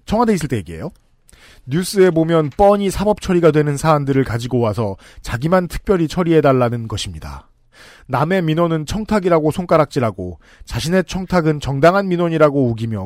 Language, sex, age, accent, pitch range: Korean, male, 40-59, native, 120-170 Hz